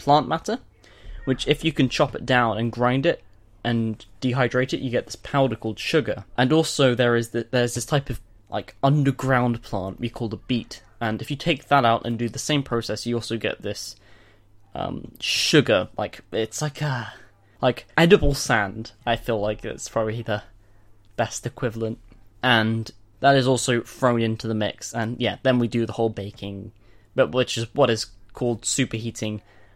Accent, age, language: British, 10-29, English